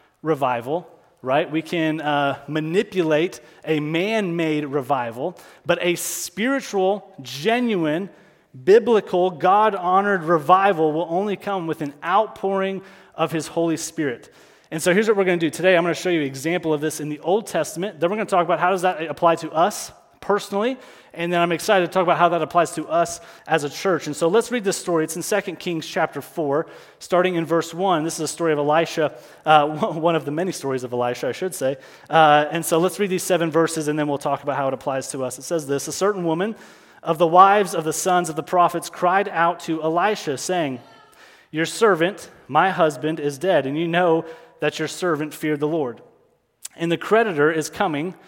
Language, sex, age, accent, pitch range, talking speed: English, male, 30-49, American, 155-185 Hz, 210 wpm